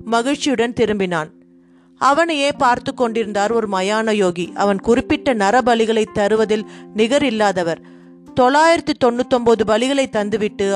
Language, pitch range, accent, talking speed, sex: Tamil, 200-255 Hz, native, 110 wpm, female